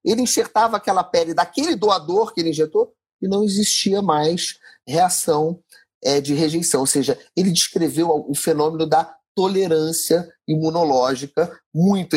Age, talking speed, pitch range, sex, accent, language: 30-49, 130 wpm, 140-210 Hz, male, Brazilian, Portuguese